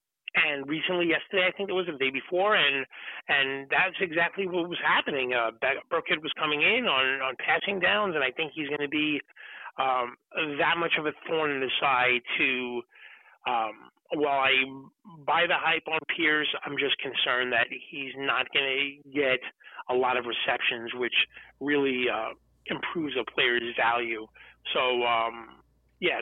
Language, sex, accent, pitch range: English, male, American, 125-170 Hz